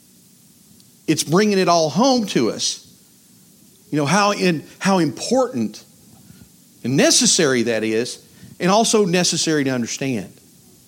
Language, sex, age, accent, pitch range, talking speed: English, male, 50-69, American, 170-230 Hz, 115 wpm